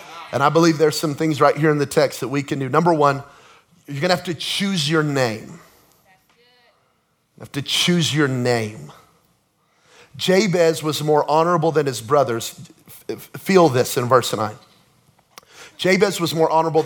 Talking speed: 165 wpm